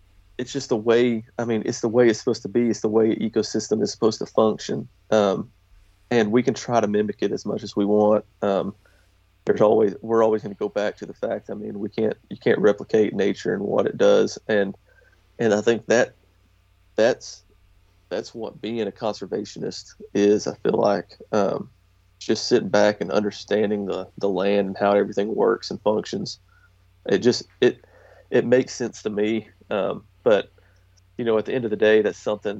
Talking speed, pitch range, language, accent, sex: 200 wpm, 95-115 Hz, English, American, male